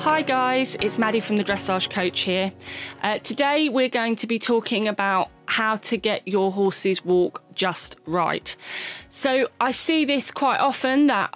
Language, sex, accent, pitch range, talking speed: English, female, British, 195-240 Hz, 170 wpm